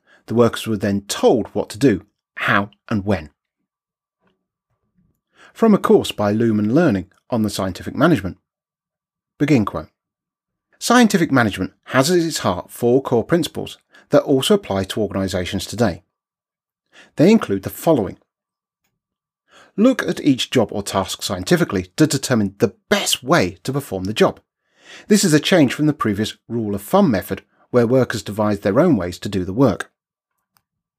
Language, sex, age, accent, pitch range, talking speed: English, male, 40-59, British, 100-155 Hz, 155 wpm